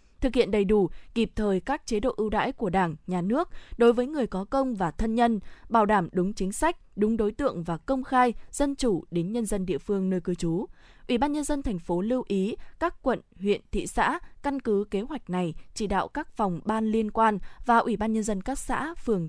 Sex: female